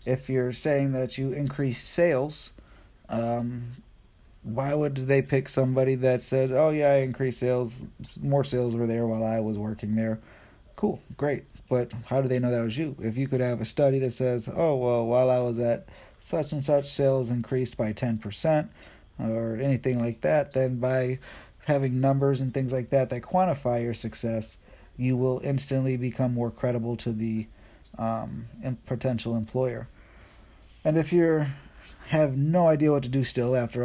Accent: American